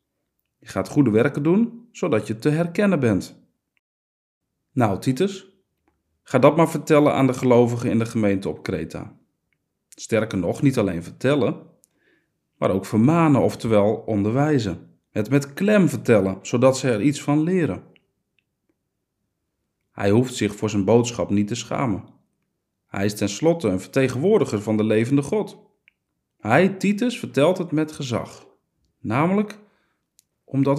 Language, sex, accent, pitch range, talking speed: Dutch, male, Dutch, 100-150 Hz, 135 wpm